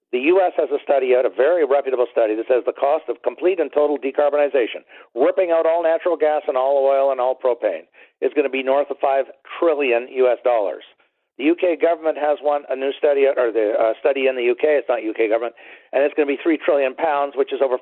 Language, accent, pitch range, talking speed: English, American, 140-175 Hz, 235 wpm